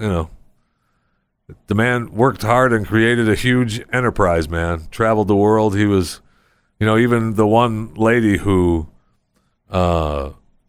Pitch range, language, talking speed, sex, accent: 80-110 Hz, English, 140 wpm, male, American